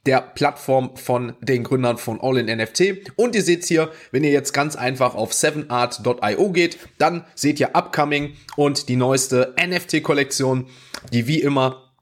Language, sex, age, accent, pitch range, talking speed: German, male, 30-49, German, 120-145 Hz, 165 wpm